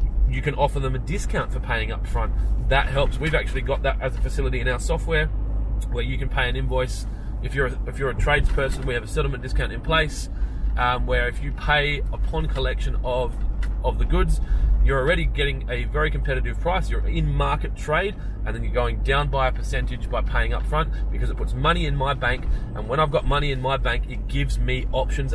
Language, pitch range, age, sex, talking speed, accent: English, 120-160 Hz, 20-39, male, 220 wpm, Australian